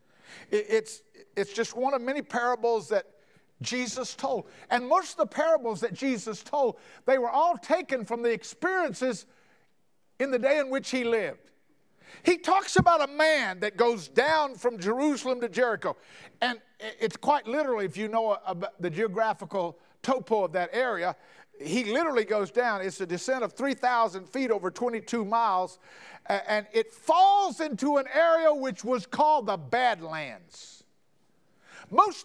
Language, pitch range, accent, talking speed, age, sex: English, 215-295 Hz, American, 155 wpm, 50-69, male